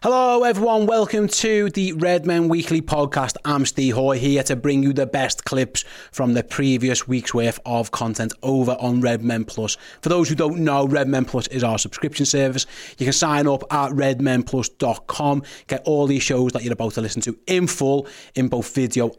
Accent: British